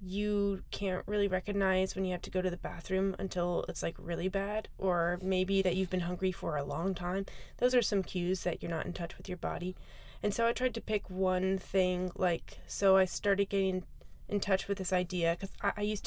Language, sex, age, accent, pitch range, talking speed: English, female, 20-39, American, 180-200 Hz, 230 wpm